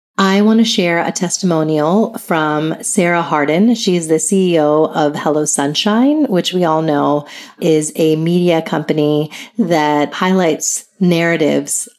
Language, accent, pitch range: English, American, 155-195 Hz